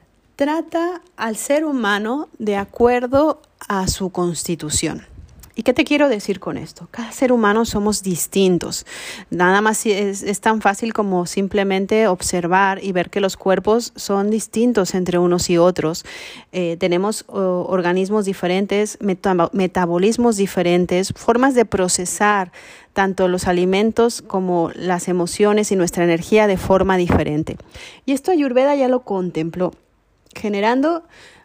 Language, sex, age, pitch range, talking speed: Spanish, female, 40-59, 180-230 Hz, 130 wpm